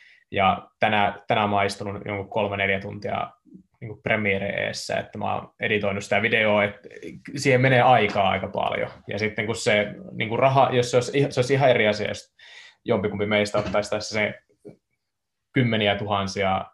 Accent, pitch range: native, 100-125 Hz